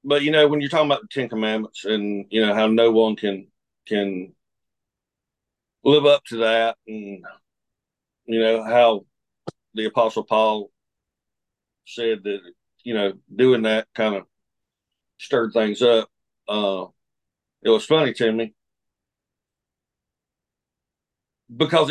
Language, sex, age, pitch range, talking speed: English, male, 50-69, 110-140 Hz, 130 wpm